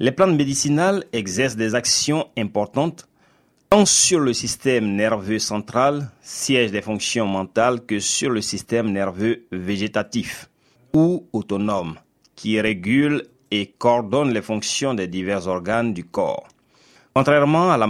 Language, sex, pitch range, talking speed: French, male, 105-135 Hz, 130 wpm